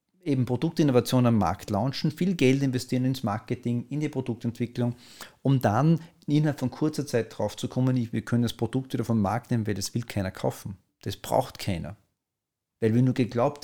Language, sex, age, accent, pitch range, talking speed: German, male, 40-59, Austrian, 110-140 Hz, 185 wpm